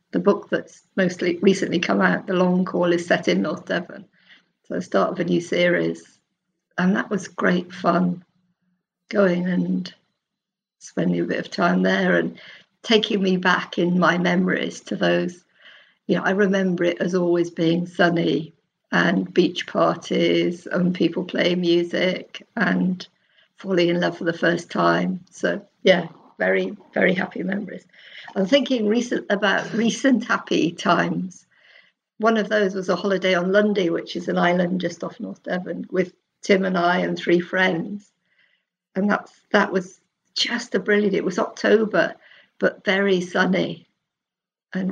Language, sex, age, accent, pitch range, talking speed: English, female, 50-69, British, 175-195 Hz, 150 wpm